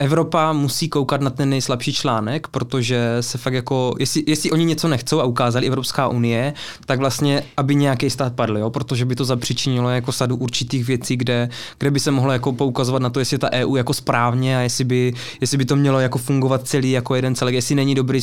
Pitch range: 125-150 Hz